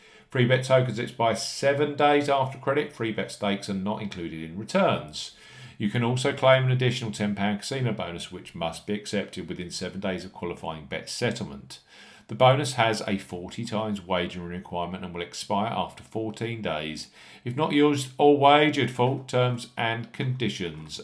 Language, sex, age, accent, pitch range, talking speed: English, male, 50-69, British, 100-140 Hz, 170 wpm